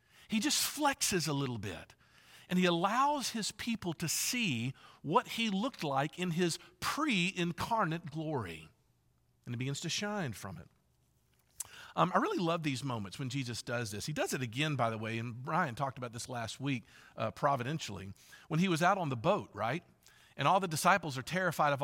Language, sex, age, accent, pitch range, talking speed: English, male, 50-69, American, 135-180 Hz, 190 wpm